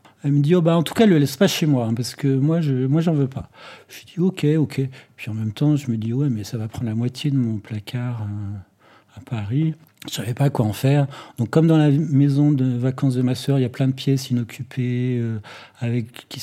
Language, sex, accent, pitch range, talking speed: French, male, French, 110-140 Hz, 295 wpm